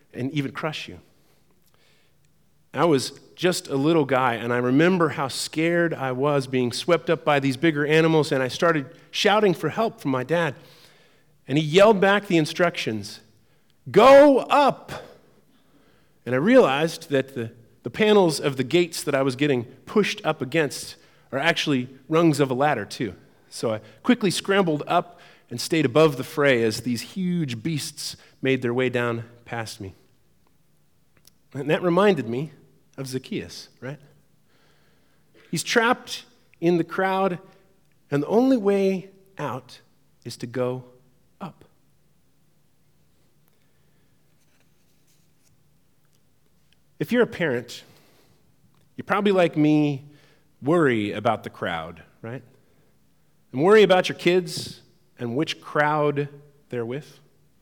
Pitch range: 130-170 Hz